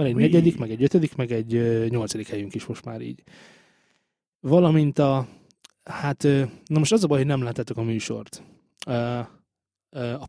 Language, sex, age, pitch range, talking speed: Hungarian, male, 20-39, 115-160 Hz, 180 wpm